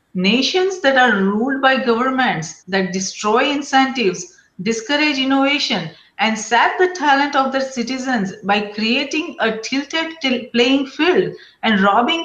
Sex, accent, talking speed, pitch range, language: female, Indian, 125 wpm, 225-290 Hz, English